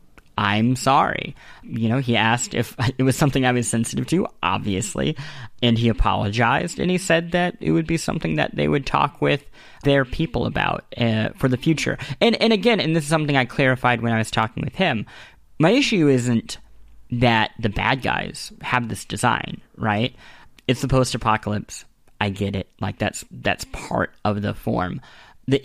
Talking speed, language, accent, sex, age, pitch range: 185 wpm, English, American, male, 20-39, 110-135 Hz